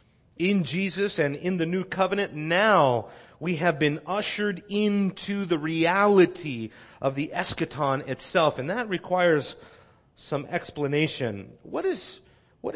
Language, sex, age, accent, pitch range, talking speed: English, male, 30-49, American, 135-190 Hz, 125 wpm